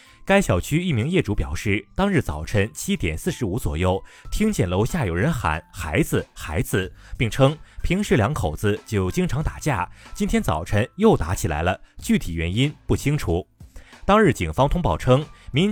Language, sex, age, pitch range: Chinese, male, 30-49, 90-140 Hz